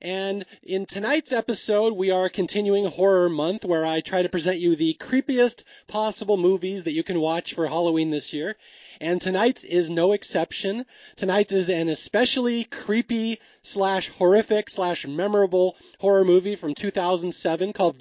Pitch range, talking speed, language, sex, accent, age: 165-215 Hz, 140 wpm, English, male, American, 30-49